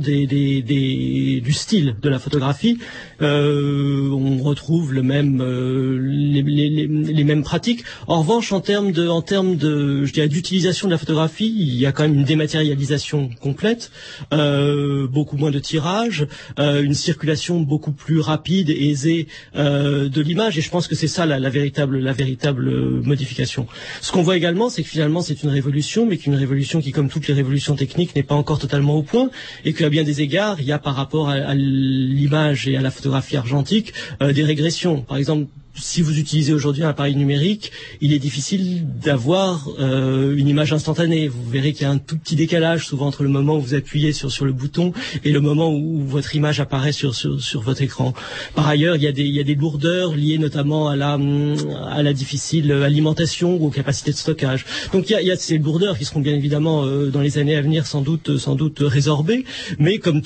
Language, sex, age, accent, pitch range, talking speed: French, male, 40-59, French, 140-160 Hz, 205 wpm